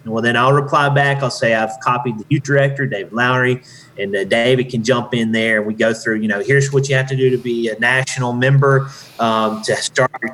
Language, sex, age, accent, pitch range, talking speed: English, male, 30-49, American, 115-140 Hz, 240 wpm